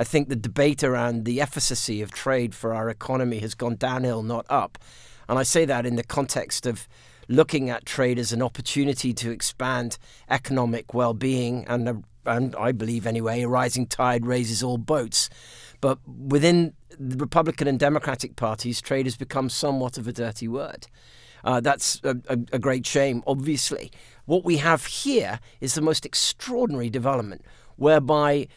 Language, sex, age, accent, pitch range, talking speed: English, male, 50-69, British, 120-150 Hz, 165 wpm